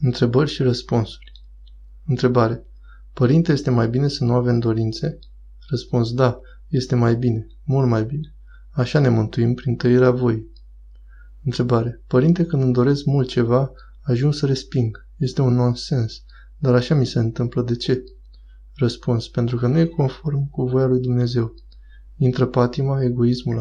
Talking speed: 150 wpm